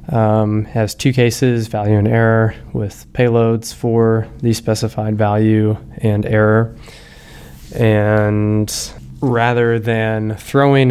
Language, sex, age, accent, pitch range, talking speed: English, male, 20-39, American, 105-120 Hz, 105 wpm